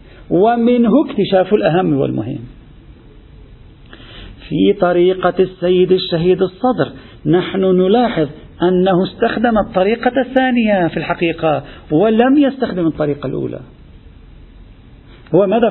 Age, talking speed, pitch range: 50-69, 85 wpm, 155-220 Hz